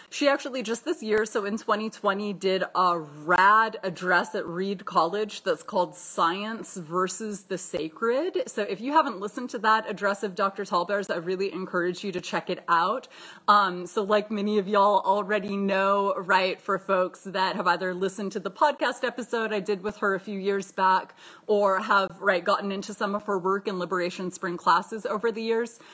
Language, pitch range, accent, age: English, 185-220 Hz, American, 30-49